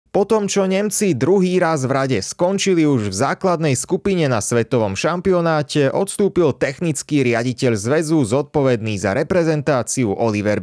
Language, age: Slovak, 30-49